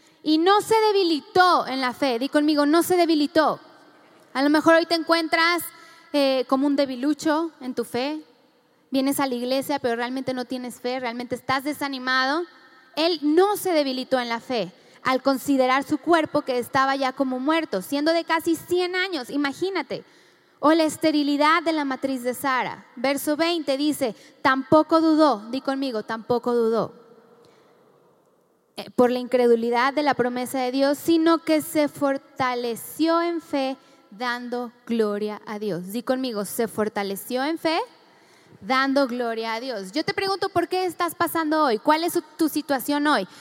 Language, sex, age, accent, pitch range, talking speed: Spanish, female, 10-29, Mexican, 260-335 Hz, 160 wpm